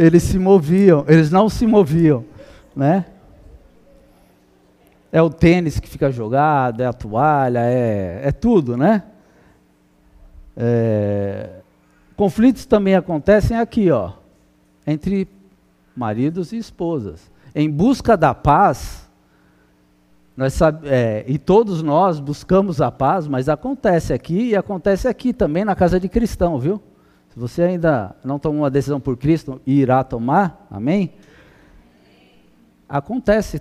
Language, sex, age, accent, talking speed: Portuguese, male, 50-69, Brazilian, 115 wpm